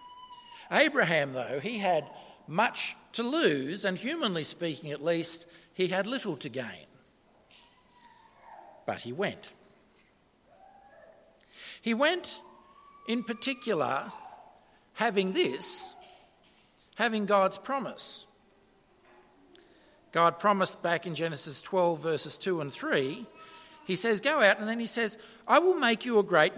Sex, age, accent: male, 60-79, Australian